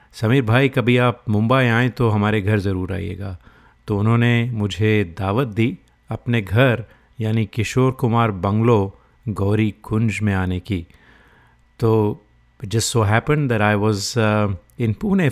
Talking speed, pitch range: 140 wpm, 100-120 Hz